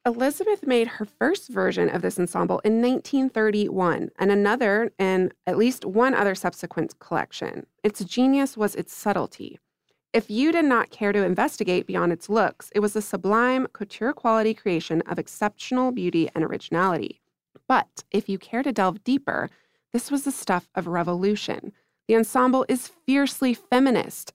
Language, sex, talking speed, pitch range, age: English, female, 155 wpm, 180-235 Hz, 20-39